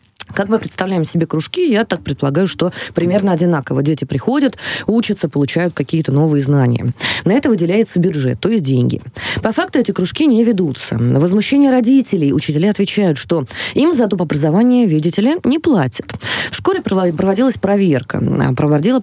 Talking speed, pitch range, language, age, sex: 150 wpm, 150-220 Hz, Russian, 20-39, female